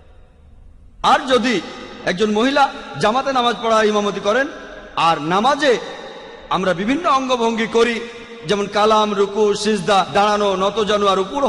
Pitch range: 205-270 Hz